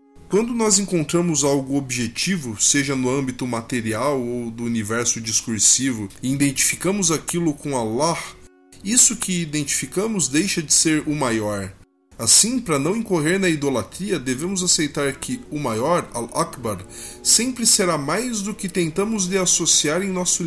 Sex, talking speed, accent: male, 140 wpm, Brazilian